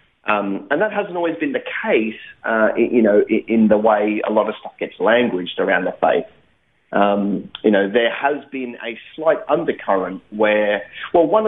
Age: 30-49